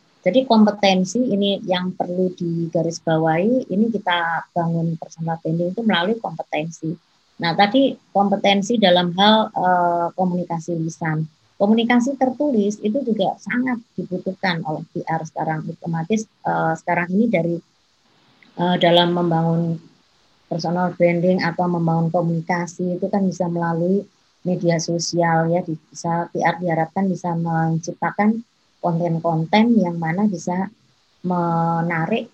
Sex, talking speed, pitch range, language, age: male, 115 wpm, 170-210 Hz, Indonesian, 20-39